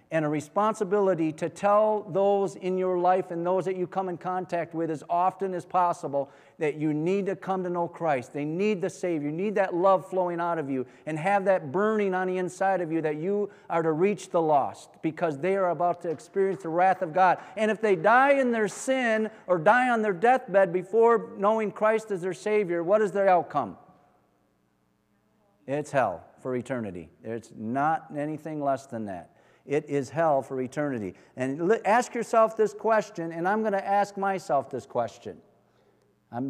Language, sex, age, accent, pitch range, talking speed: English, male, 40-59, American, 155-200 Hz, 190 wpm